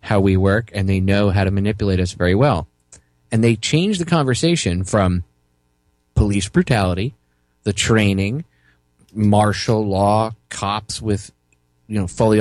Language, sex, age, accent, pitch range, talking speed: English, male, 20-39, American, 95-115 Hz, 140 wpm